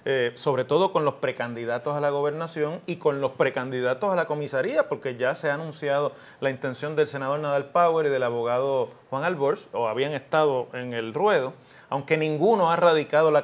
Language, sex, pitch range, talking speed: English, male, 140-180 Hz, 190 wpm